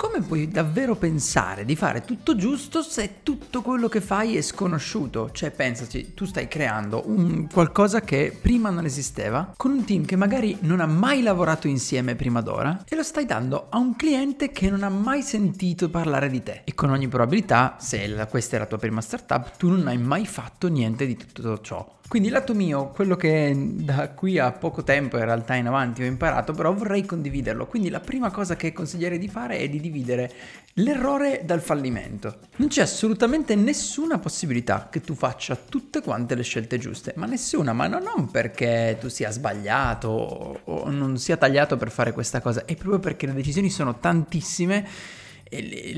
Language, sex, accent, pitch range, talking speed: Italian, male, native, 130-205 Hz, 190 wpm